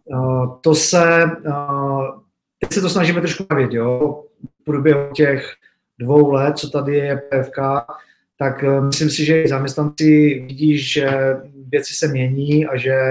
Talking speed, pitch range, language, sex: 145 wpm, 135-155 Hz, Czech, male